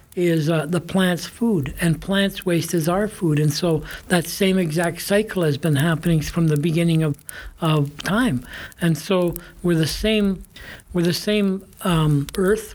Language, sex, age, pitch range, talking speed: English, male, 60-79, 155-185 Hz, 170 wpm